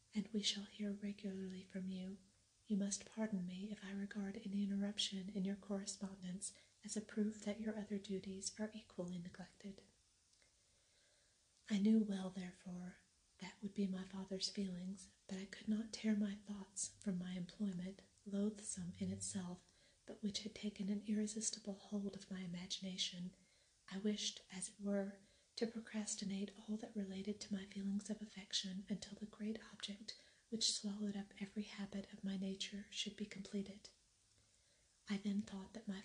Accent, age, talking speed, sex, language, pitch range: American, 40-59, 160 wpm, female, English, 195-210 Hz